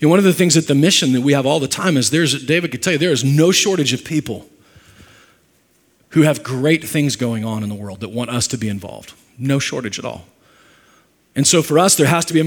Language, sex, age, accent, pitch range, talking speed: English, male, 40-59, American, 120-160 Hz, 265 wpm